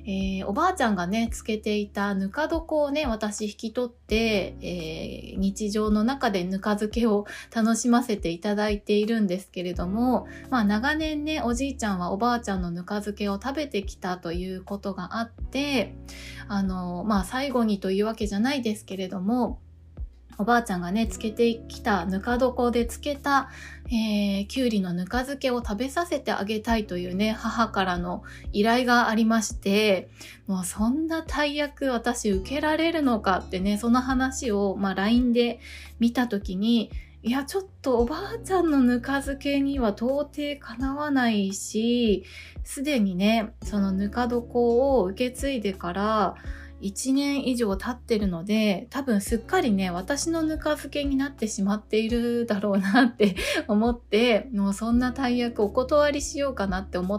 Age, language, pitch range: 20-39, Japanese, 200-260 Hz